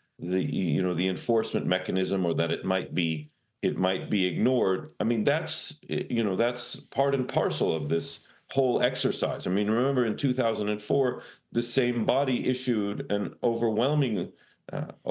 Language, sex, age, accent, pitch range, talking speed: English, male, 40-59, American, 95-125 Hz, 160 wpm